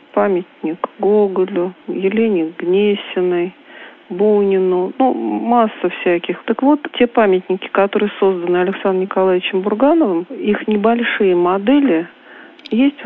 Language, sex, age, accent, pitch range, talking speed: Russian, female, 40-59, native, 180-230 Hz, 95 wpm